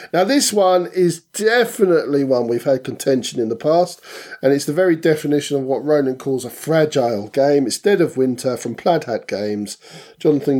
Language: English